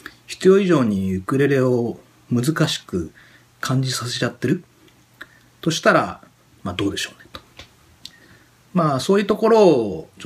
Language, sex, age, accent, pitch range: Japanese, male, 40-59, native, 120-180 Hz